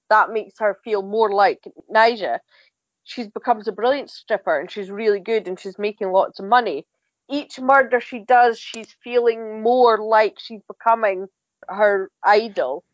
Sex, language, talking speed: female, English, 160 wpm